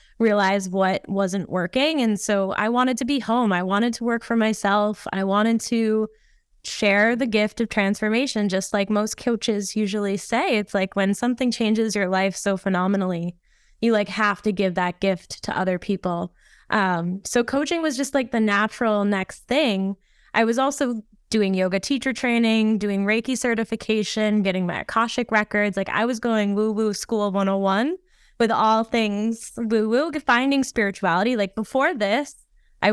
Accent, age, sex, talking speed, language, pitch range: American, 10-29, female, 165 wpm, English, 195-230 Hz